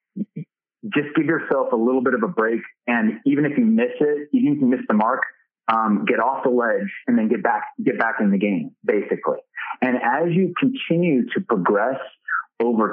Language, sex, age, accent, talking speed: English, male, 30-49, American, 200 wpm